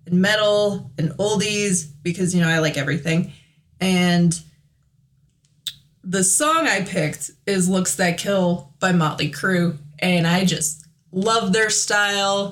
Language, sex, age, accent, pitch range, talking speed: English, female, 20-39, American, 160-200 Hz, 135 wpm